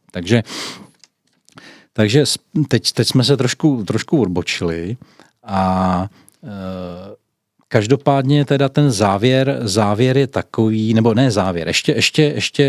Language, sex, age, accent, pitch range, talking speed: Czech, male, 40-59, native, 90-115 Hz, 115 wpm